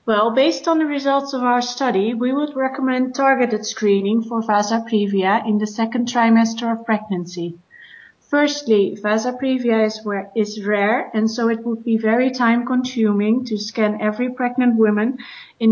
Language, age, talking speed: English, 30-49, 155 wpm